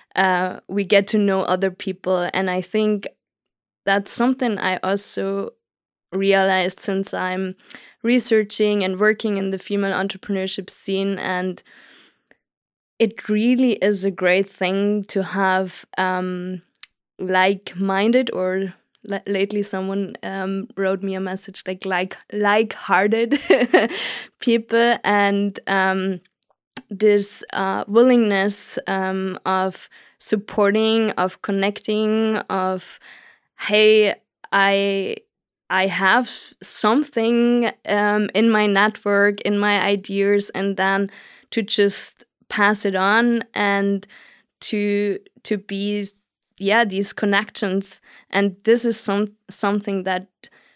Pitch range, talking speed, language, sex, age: 190-215 Hz, 110 wpm, English, female, 20-39